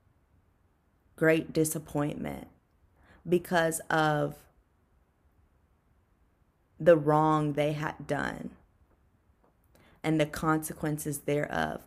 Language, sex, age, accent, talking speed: English, female, 20-39, American, 65 wpm